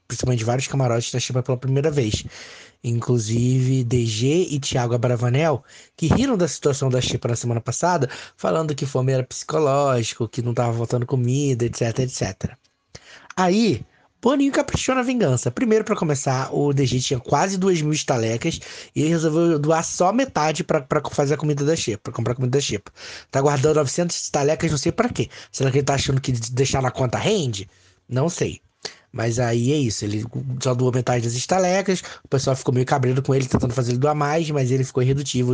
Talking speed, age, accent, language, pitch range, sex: 190 wpm, 20-39, Brazilian, Portuguese, 125-165 Hz, male